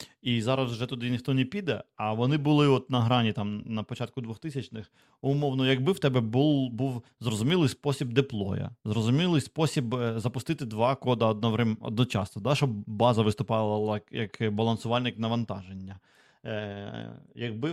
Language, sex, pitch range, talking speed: Ukrainian, male, 110-135 Hz, 140 wpm